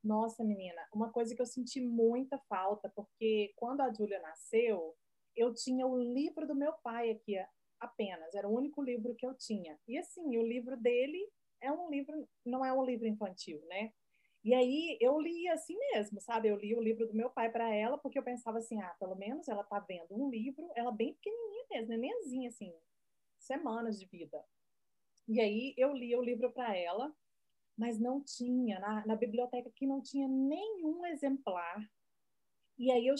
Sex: female